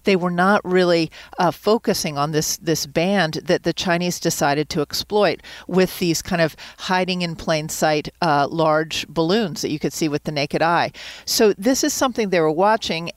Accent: American